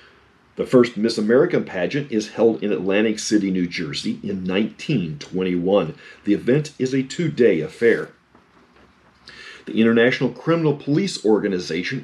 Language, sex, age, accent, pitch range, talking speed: English, male, 40-59, American, 100-145 Hz, 125 wpm